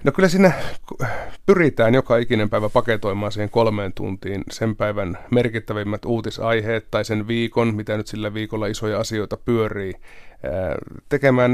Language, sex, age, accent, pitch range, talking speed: Finnish, male, 30-49, native, 105-120 Hz, 135 wpm